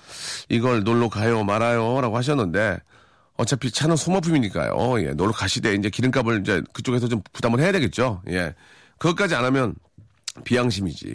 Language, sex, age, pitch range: Korean, male, 40-59, 100-130 Hz